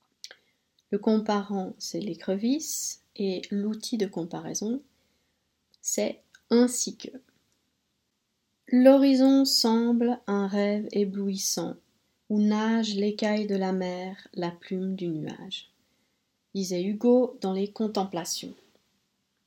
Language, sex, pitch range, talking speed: French, female, 175-220 Hz, 95 wpm